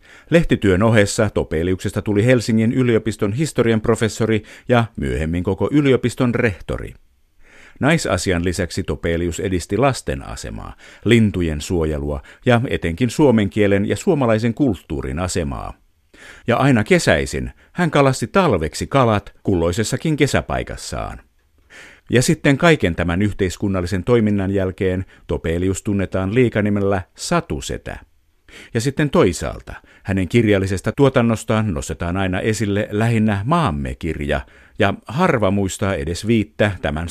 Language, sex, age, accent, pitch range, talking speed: Finnish, male, 50-69, native, 85-120 Hz, 105 wpm